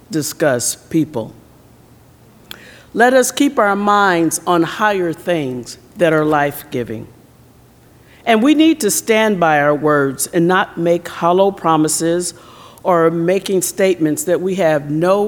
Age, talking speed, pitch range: 50-69, 130 wpm, 140-195 Hz